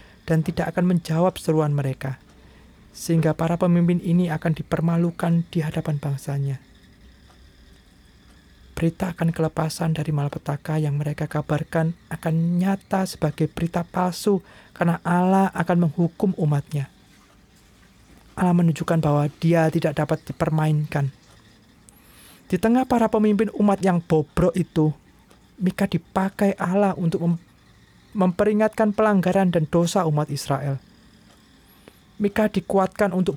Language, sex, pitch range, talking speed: Indonesian, male, 150-185 Hz, 110 wpm